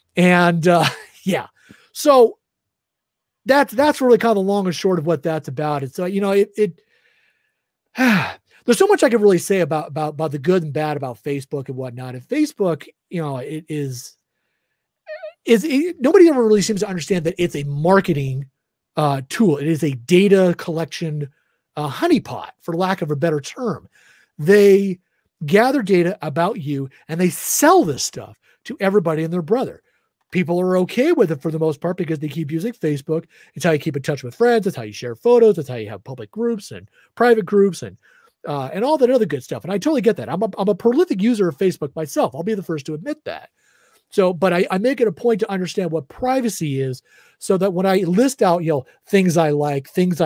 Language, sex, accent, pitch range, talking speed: English, male, American, 150-210 Hz, 215 wpm